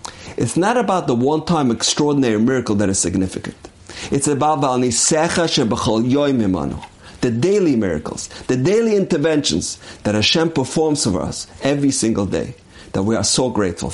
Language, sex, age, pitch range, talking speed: English, male, 50-69, 100-155 Hz, 135 wpm